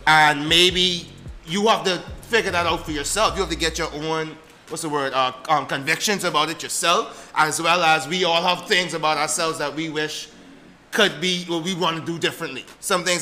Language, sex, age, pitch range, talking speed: English, male, 30-49, 155-195 Hz, 215 wpm